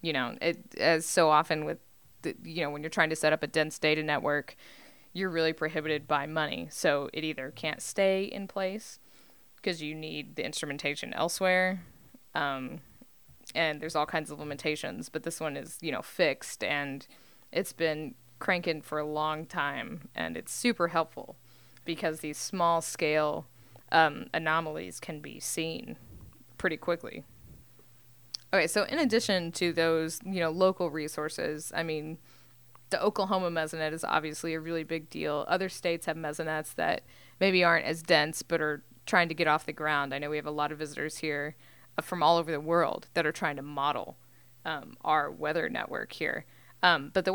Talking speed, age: 175 wpm, 20-39